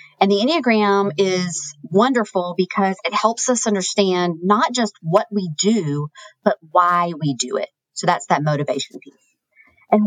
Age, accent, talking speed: 40-59, American, 155 wpm